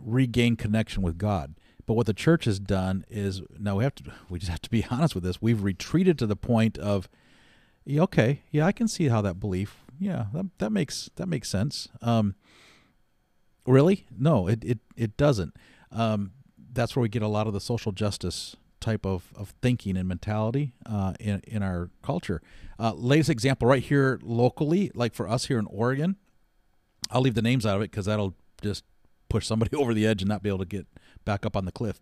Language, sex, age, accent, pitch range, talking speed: English, male, 40-59, American, 100-125 Hz, 210 wpm